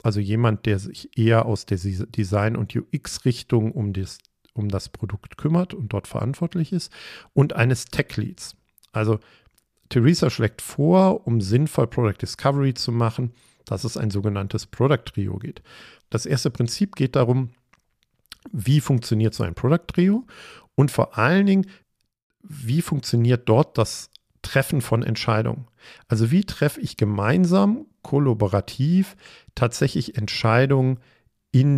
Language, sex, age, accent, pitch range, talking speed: German, male, 50-69, German, 110-140 Hz, 130 wpm